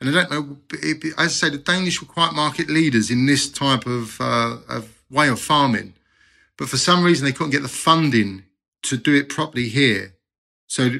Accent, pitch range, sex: British, 115-150 Hz, male